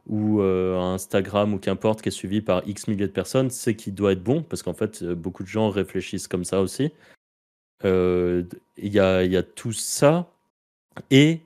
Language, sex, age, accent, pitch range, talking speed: French, male, 30-49, French, 95-115 Hz, 190 wpm